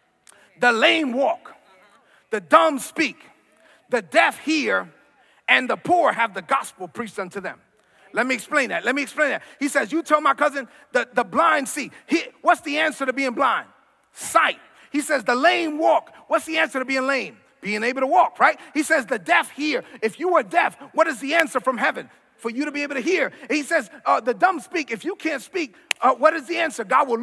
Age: 40-59